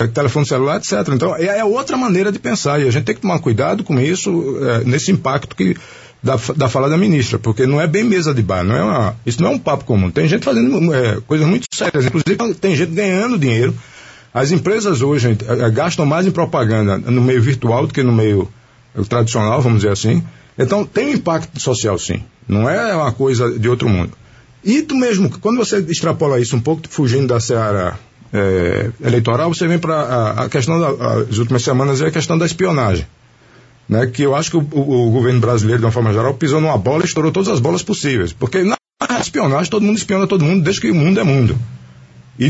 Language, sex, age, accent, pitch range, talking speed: Portuguese, male, 50-69, Brazilian, 120-180 Hz, 205 wpm